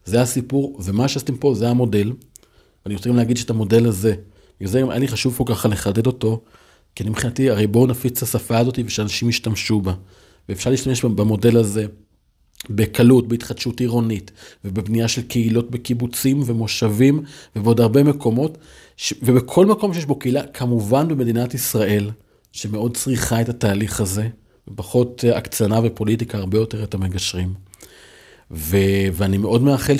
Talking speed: 140 wpm